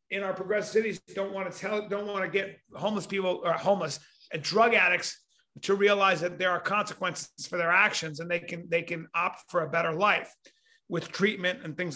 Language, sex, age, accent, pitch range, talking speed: English, male, 40-59, American, 190-230 Hz, 205 wpm